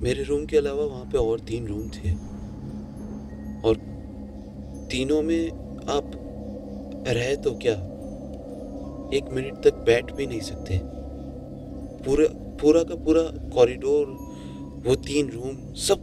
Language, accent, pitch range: Hindi, native, 90-115 Hz